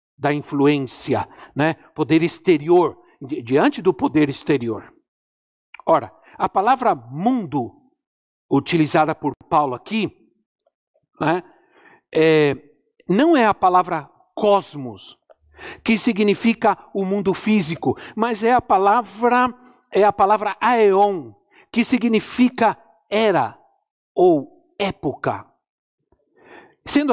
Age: 60-79